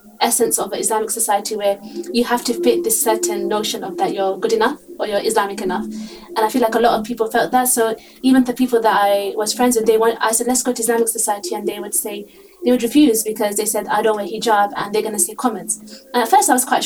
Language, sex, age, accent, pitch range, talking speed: English, female, 20-39, British, 215-250 Hz, 270 wpm